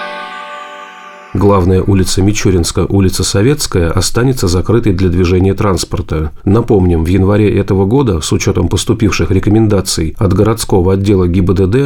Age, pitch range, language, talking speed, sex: 40-59, 90-105 Hz, Russian, 115 wpm, male